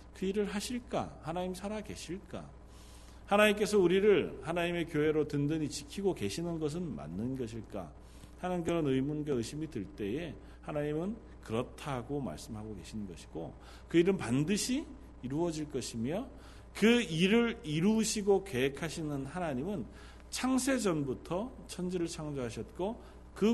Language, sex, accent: Korean, male, native